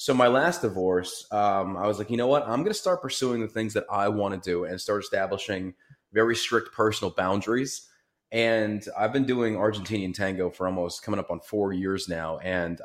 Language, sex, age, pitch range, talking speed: English, male, 30-49, 95-110 Hz, 210 wpm